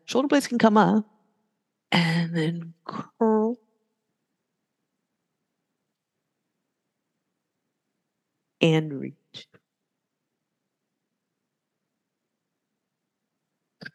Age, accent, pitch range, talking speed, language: 50-69, American, 135-210 Hz, 45 wpm, English